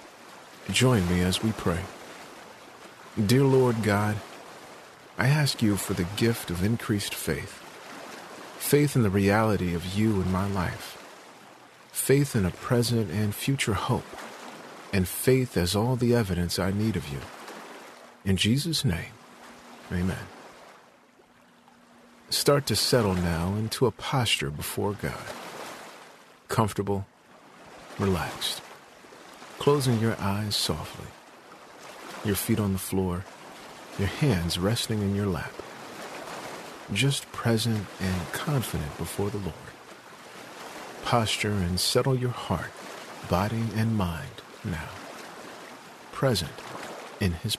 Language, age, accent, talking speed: English, 50-69, American, 115 wpm